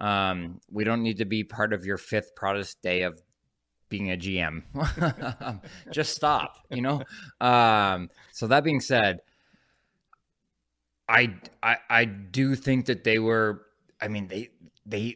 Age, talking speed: 20-39, 145 wpm